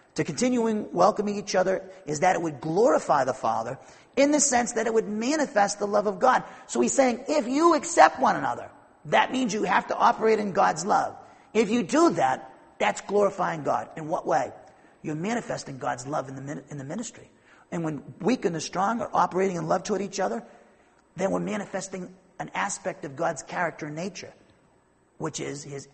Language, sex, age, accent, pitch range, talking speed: English, male, 40-59, American, 160-235 Hz, 195 wpm